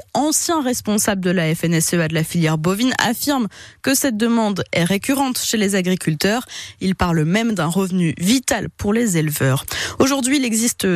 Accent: French